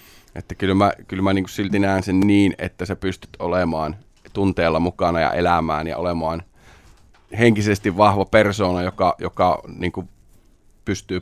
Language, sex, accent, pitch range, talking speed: Finnish, male, native, 90-100 Hz, 145 wpm